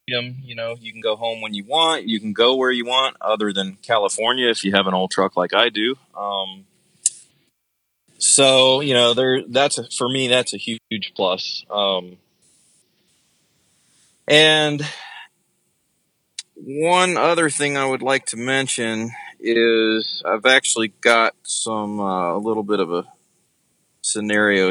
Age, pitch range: 20-39, 100-130 Hz